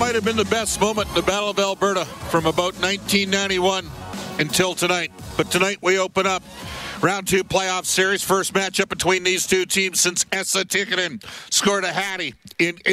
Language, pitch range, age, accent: English, 135-195 Hz, 50-69, American